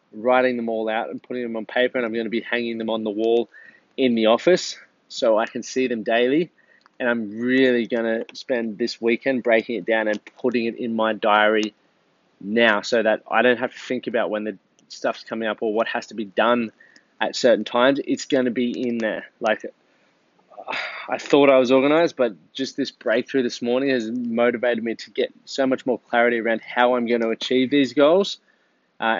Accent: Australian